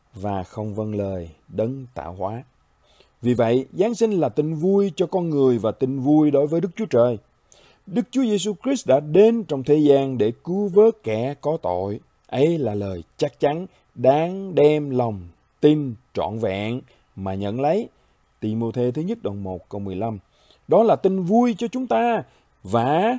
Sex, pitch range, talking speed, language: male, 120-195 Hz, 185 wpm, Vietnamese